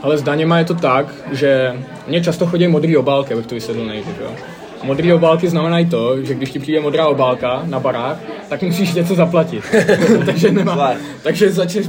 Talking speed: 175 wpm